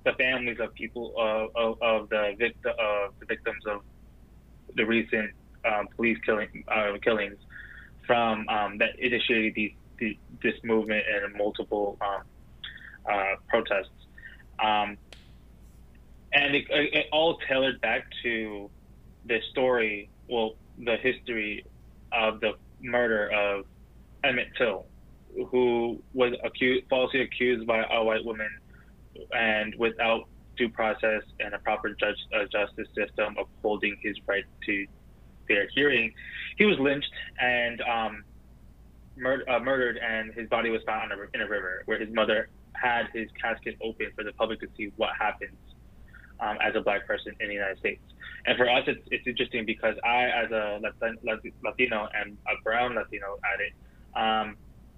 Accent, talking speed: American, 150 wpm